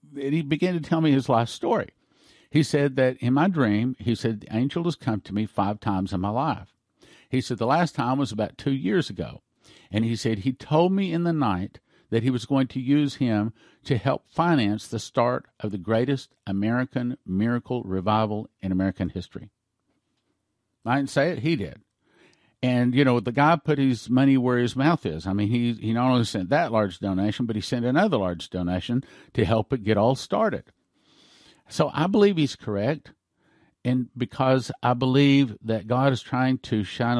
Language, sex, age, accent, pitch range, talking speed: English, male, 50-69, American, 105-135 Hz, 200 wpm